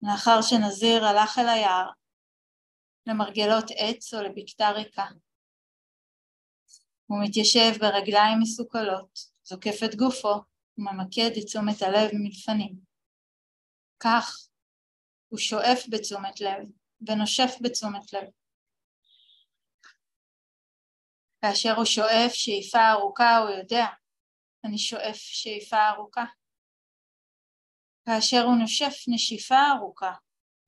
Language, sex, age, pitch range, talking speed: Hebrew, female, 30-49, 205-235 Hz, 90 wpm